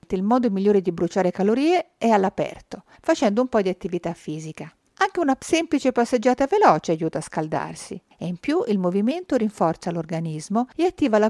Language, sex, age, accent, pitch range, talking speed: Italian, female, 50-69, native, 175-265 Hz, 170 wpm